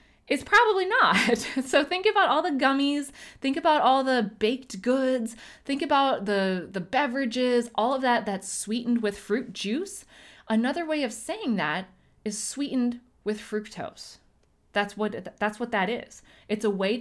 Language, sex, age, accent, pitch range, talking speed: English, female, 20-39, American, 180-240 Hz, 160 wpm